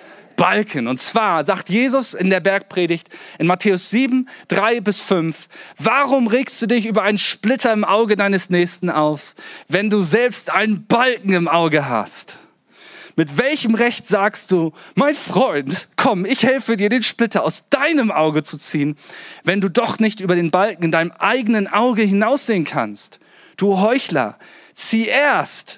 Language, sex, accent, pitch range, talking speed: German, male, German, 160-230 Hz, 160 wpm